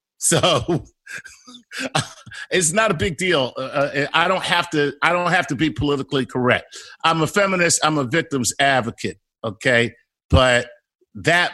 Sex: male